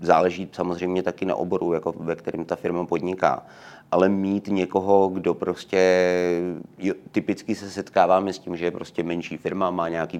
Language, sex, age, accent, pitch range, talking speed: Czech, male, 30-49, native, 80-90 Hz, 170 wpm